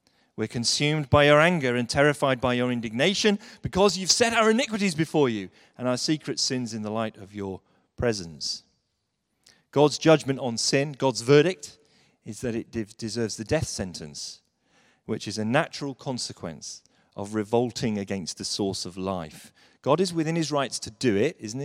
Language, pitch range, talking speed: English, 115-155 Hz, 170 wpm